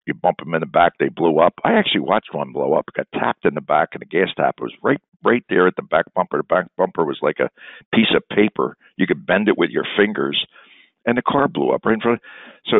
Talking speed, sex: 275 wpm, male